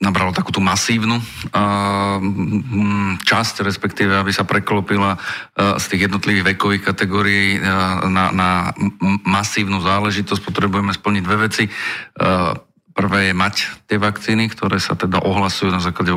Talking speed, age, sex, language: 120 wpm, 40-59, male, Slovak